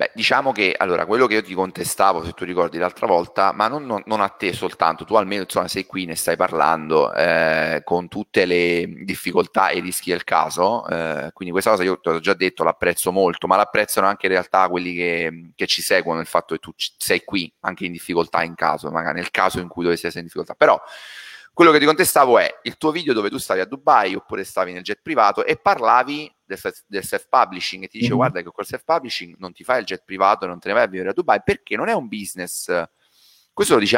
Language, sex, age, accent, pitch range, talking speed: Italian, male, 30-49, native, 85-130 Hz, 235 wpm